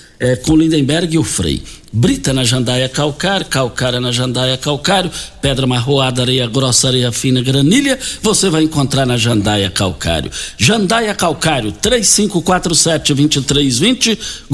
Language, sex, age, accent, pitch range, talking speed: Portuguese, male, 60-79, Brazilian, 120-160 Hz, 130 wpm